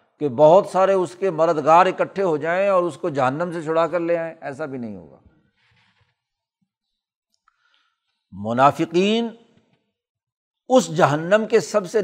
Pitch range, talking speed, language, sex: 160-205 Hz, 140 wpm, Urdu, male